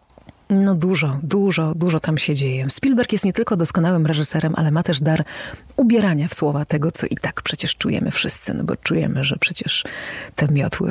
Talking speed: 185 wpm